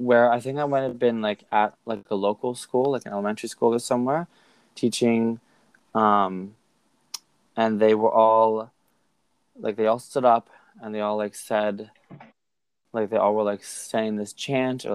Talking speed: 175 wpm